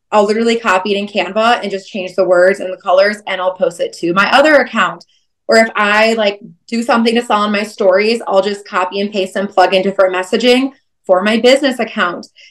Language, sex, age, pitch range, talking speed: English, female, 20-39, 195-250 Hz, 225 wpm